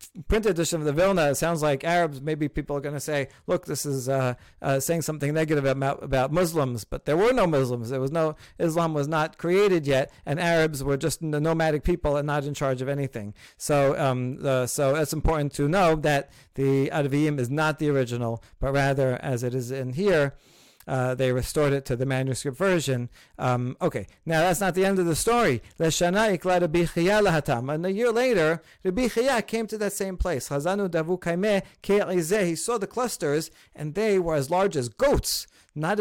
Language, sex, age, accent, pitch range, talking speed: English, male, 50-69, American, 140-185 Hz, 190 wpm